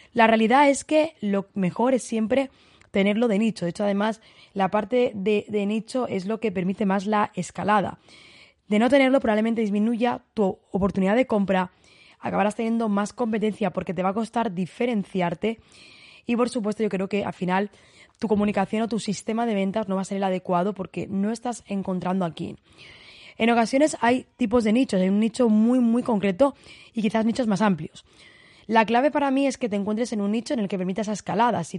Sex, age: female, 20-39